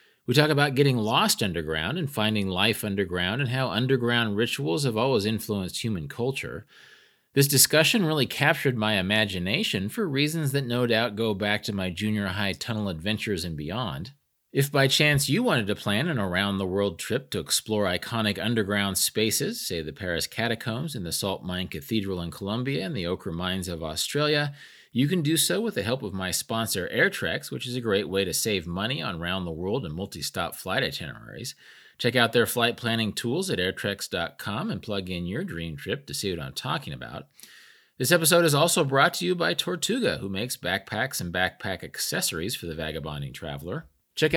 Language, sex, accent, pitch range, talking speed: English, male, American, 95-135 Hz, 185 wpm